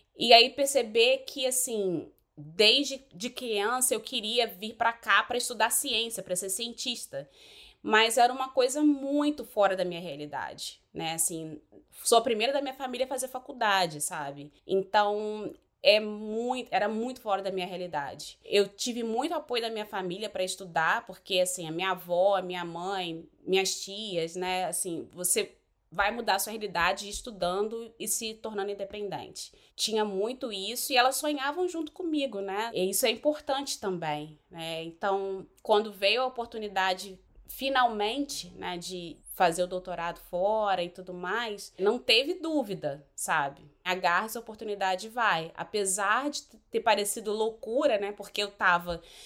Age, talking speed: 20-39, 150 wpm